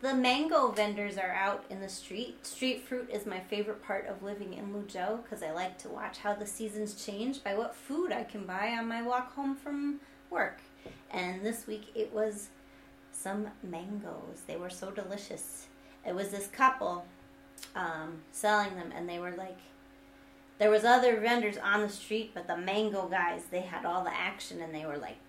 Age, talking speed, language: 30-49, 190 wpm, English